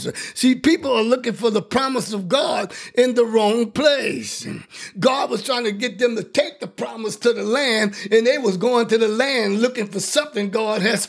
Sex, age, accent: male, 50-69, American